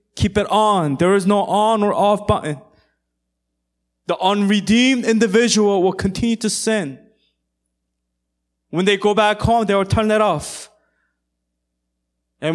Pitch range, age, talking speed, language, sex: 140-215 Hz, 20-39, 135 wpm, English, male